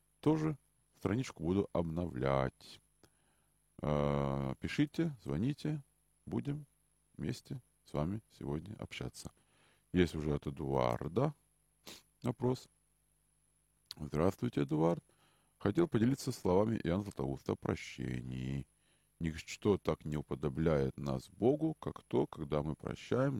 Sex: male